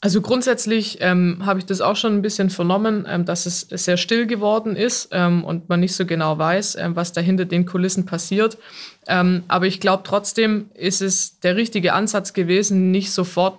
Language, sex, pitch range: German, female, 180-205 Hz